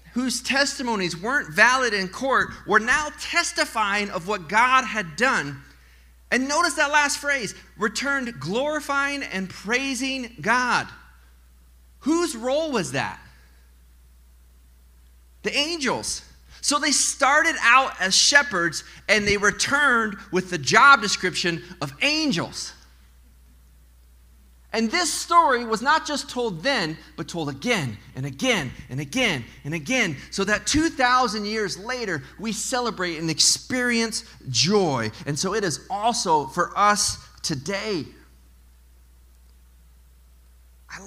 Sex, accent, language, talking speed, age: male, American, English, 120 wpm, 30-49